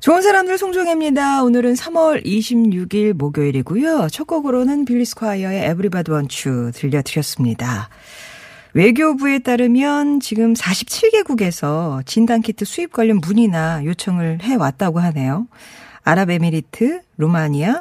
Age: 40-59